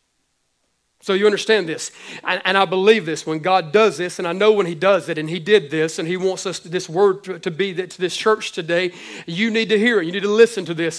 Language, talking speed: English, 275 wpm